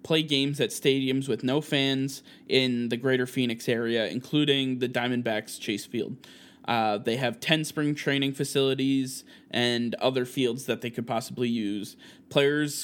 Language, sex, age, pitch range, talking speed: English, male, 20-39, 125-140 Hz, 155 wpm